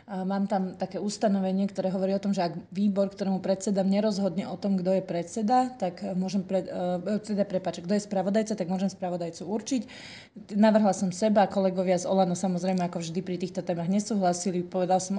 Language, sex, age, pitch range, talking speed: Slovak, female, 30-49, 185-210 Hz, 180 wpm